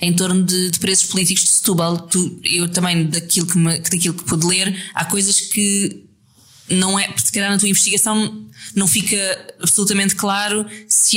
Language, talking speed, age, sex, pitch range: Portuguese, 175 wpm, 20-39, female, 170-200 Hz